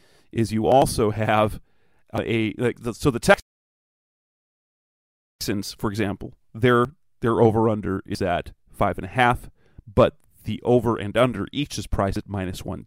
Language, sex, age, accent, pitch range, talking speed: English, male, 30-49, American, 105-125 Hz, 160 wpm